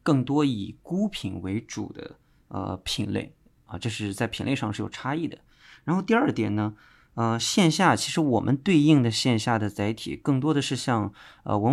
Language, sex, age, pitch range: Chinese, male, 20-39, 110-145 Hz